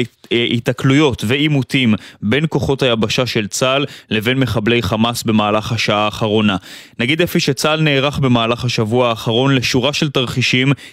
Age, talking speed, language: 20-39, 125 wpm, Hebrew